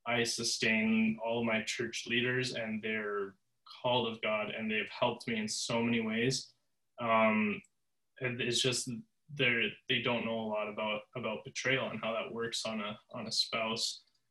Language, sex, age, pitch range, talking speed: English, male, 20-39, 115-130 Hz, 170 wpm